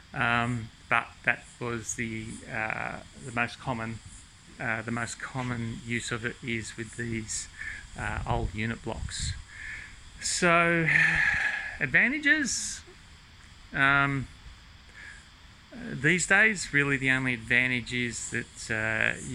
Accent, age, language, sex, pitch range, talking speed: Australian, 30-49, English, male, 110-135 Hz, 110 wpm